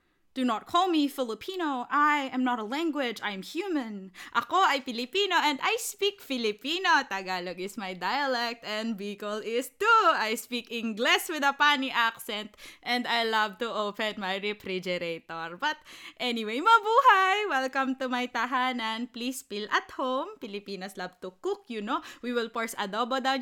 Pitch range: 230-320 Hz